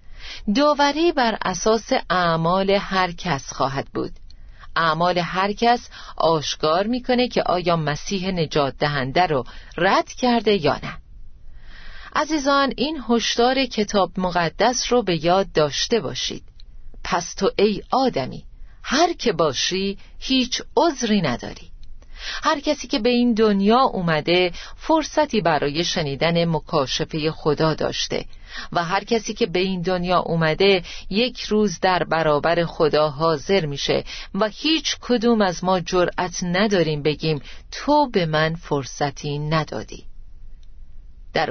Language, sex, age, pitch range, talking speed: Persian, female, 40-59, 160-230 Hz, 125 wpm